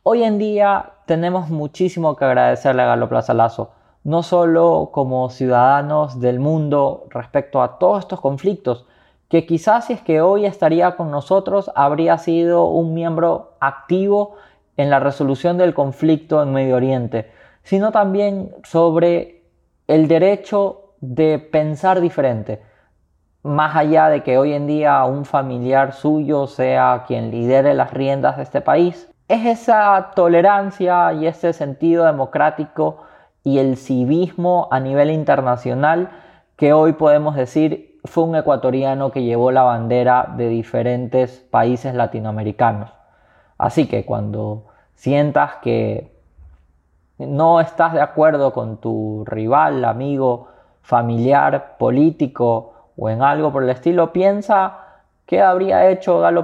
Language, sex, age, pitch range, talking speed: Spanish, male, 20-39, 125-170 Hz, 130 wpm